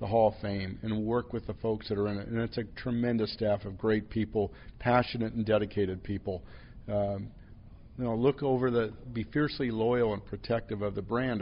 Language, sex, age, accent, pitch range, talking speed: English, male, 50-69, American, 105-120 Hz, 205 wpm